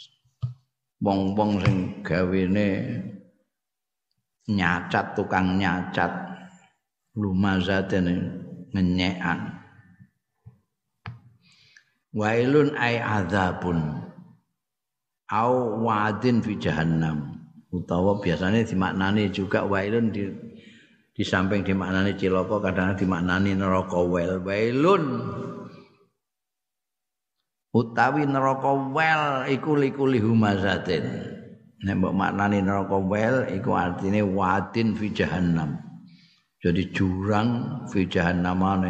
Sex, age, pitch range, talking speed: male, 50-69, 95-125 Hz, 70 wpm